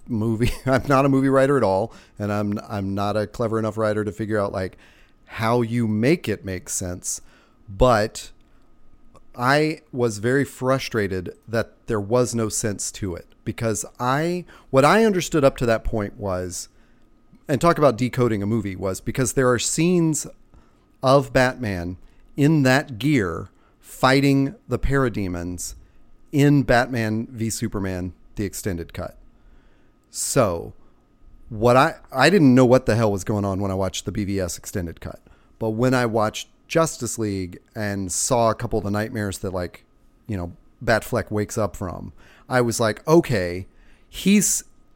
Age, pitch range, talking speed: 40-59, 100-130 Hz, 160 wpm